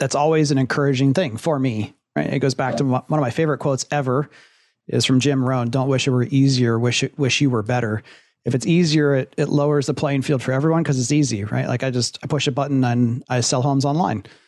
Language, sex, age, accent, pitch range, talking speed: English, male, 30-49, American, 125-155 Hz, 255 wpm